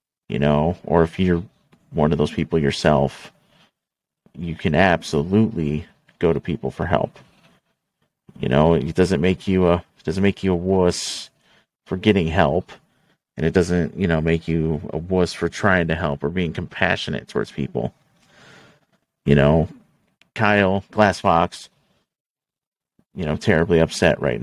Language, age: English, 40-59